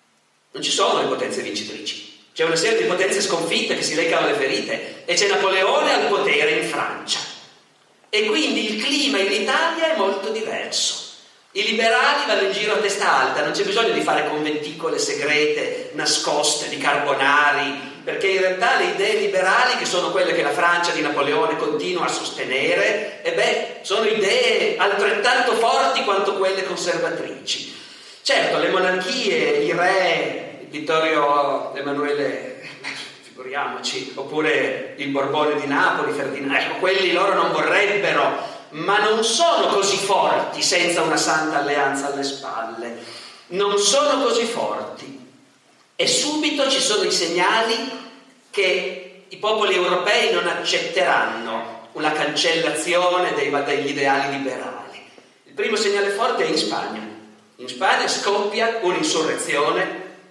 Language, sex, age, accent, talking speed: Italian, male, 40-59, native, 140 wpm